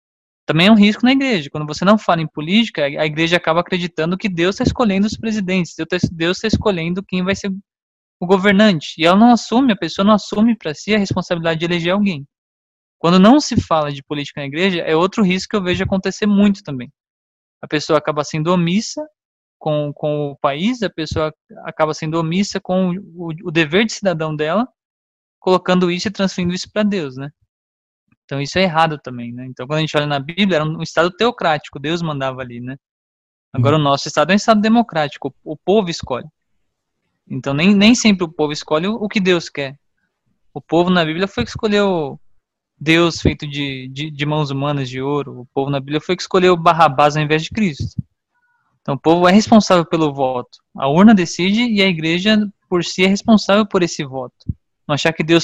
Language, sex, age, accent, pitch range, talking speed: Portuguese, male, 20-39, Brazilian, 145-195 Hz, 200 wpm